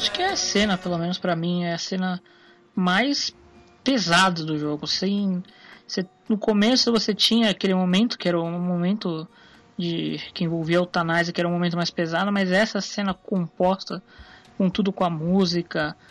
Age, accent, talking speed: 20-39, Brazilian, 175 wpm